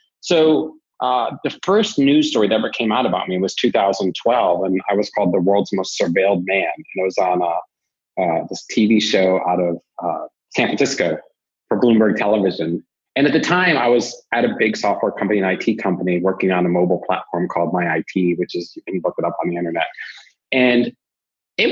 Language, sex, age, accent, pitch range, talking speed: English, male, 30-49, American, 95-145 Hz, 200 wpm